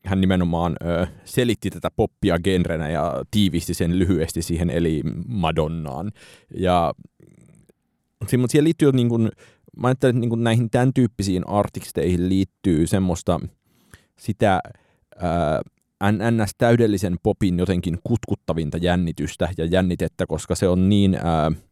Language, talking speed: Finnish, 110 wpm